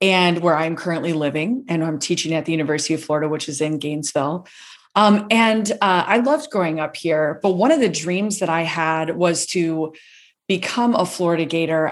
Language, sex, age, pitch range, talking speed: English, female, 30-49, 160-185 Hz, 195 wpm